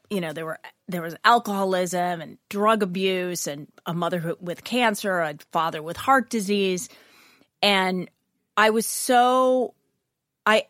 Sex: female